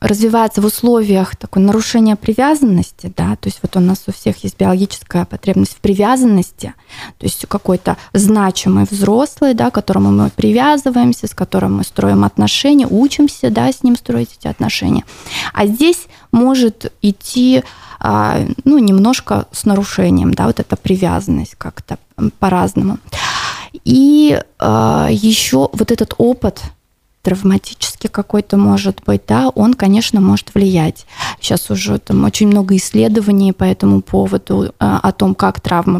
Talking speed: 135 wpm